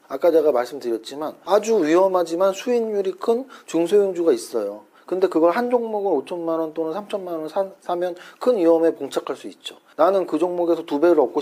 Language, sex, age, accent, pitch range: Korean, male, 40-59, native, 150-210 Hz